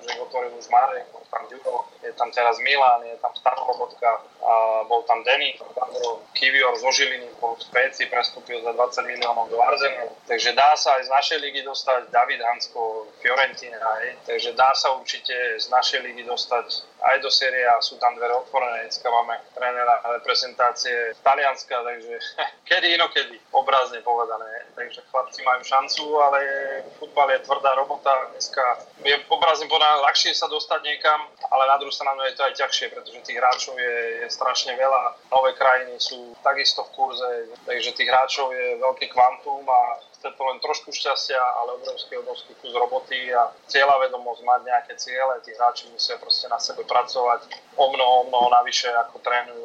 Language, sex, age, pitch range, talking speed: Slovak, male, 20-39, 120-155 Hz, 170 wpm